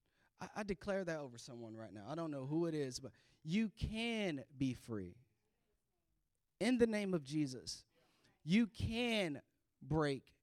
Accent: American